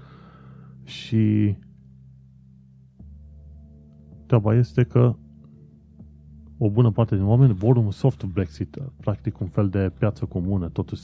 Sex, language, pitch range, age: male, Romanian, 85-110 Hz, 30-49